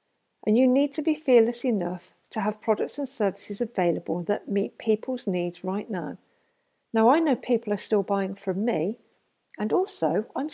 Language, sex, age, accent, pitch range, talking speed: English, female, 50-69, British, 190-245 Hz, 175 wpm